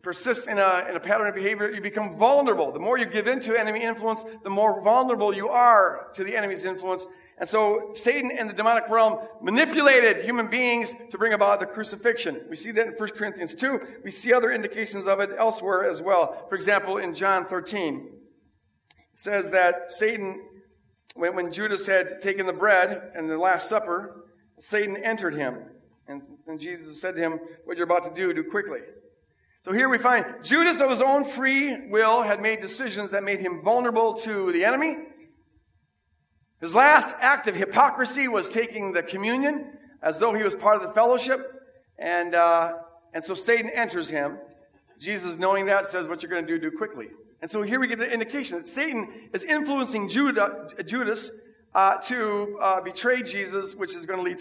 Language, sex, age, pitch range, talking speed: English, male, 50-69, 185-240 Hz, 190 wpm